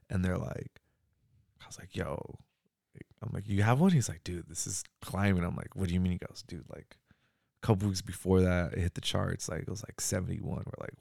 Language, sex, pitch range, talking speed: English, male, 85-100 Hz, 240 wpm